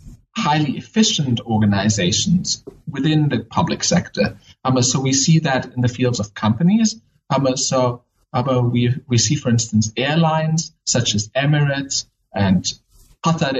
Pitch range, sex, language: 110-150 Hz, male, English